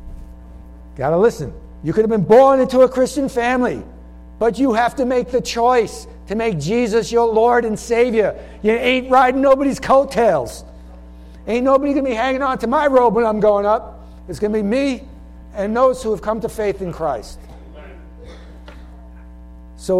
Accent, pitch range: American, 140-215 Hz